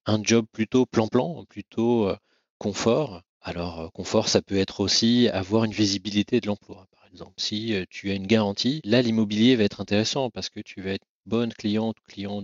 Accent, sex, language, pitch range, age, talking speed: French, male, French, 100-120 Hz, 30-49, 180 wpm